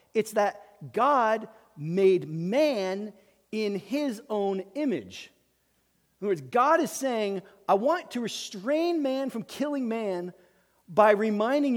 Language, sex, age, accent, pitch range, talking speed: English, male, 40-59, American, 170-225 Hz, 125 wpm